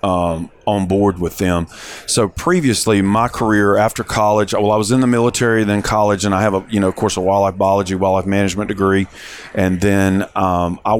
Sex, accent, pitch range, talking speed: male, American, 95-110 Hz, 215 wpm